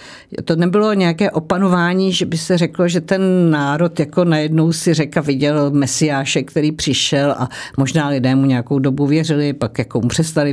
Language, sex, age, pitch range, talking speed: Czech, female, 50-69, 135-165 Hz, 165 wpm